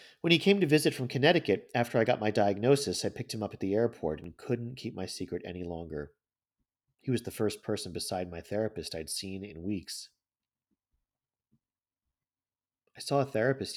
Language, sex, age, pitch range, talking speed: English, male, 40-59, 80-120 Hz, 185 wpm